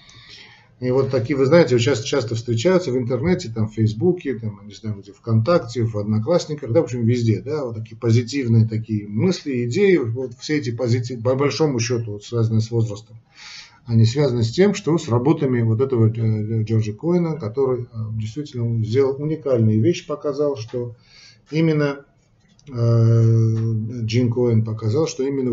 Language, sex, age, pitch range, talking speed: Russian, male, 40-59, 110-135 Hz, 150 wpm